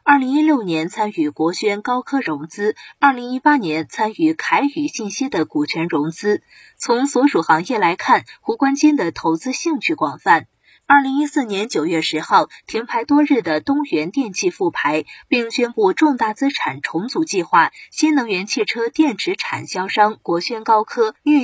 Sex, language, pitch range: female, Chinese, 195-300 Hz